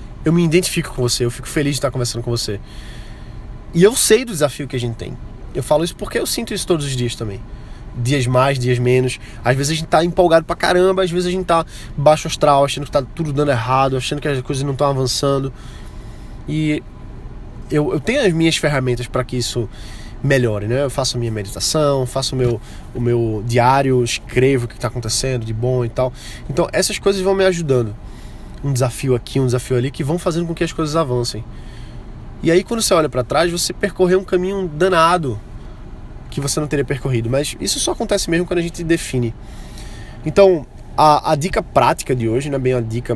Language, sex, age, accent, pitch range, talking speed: Portuguese, male, 20-39, Brazilian, 120-160 Hz, 215 wpm